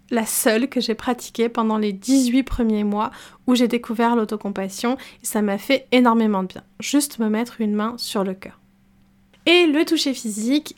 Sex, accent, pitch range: female, French, 205-270 Hz